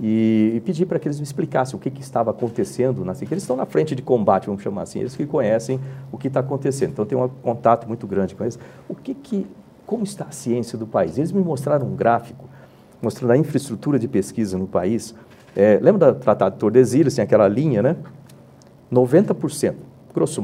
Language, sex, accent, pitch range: Portuguese, male, Brazilian, 110-140 Hz